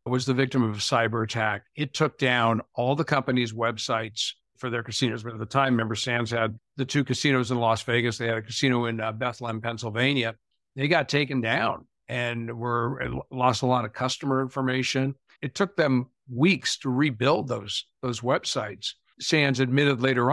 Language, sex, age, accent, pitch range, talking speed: English, male, 60-79, American, 120-135 Hz, 180 wpm